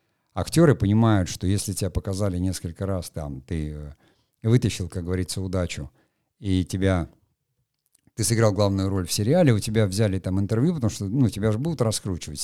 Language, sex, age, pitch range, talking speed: Russian, male, 50-69, 95-125 Hz, 170 wpm